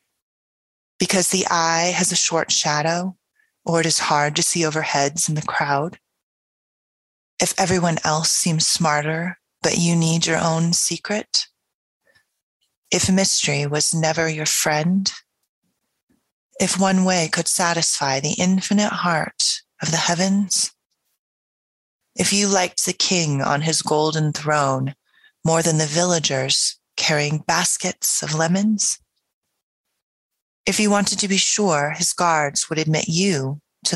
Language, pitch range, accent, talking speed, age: English, 155-185 Hz, American, 130 wpm, 30-49